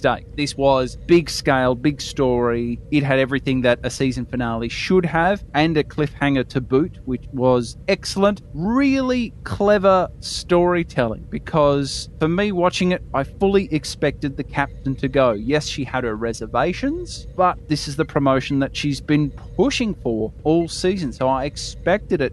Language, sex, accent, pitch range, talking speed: English, male, Australian, 130-175 Hz, 155 wpm